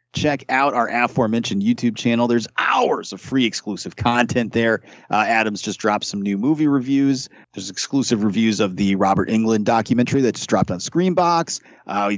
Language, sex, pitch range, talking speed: English, male, 105-150 Hz, 175 wpm